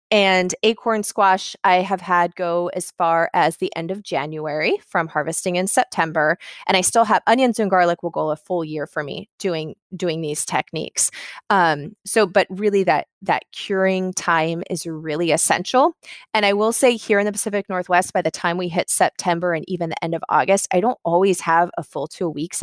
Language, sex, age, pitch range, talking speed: English, female, 20-39, 160-195 Hz, 200 wpm